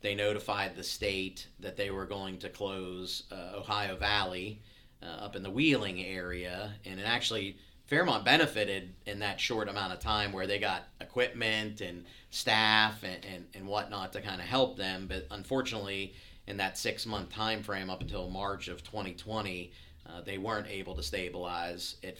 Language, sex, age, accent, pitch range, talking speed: English, male, 40-59, American, 90-110 Hz, 170 wpm